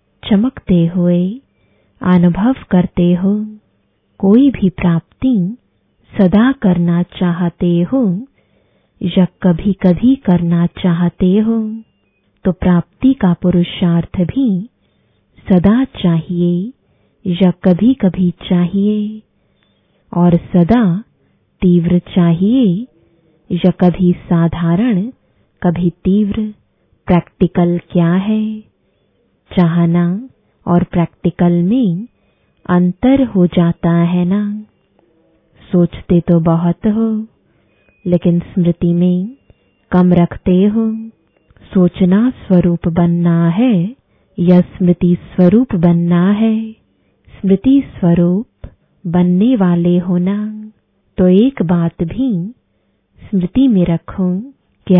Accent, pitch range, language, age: Indian, 175-210 Hz, English, 20-39